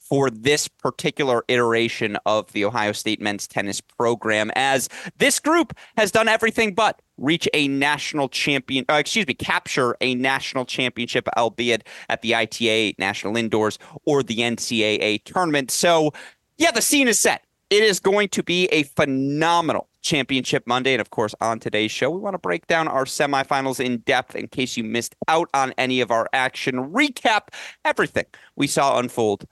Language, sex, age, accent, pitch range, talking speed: English, male, 30-49, American, 115-170 Hz, 170 wpm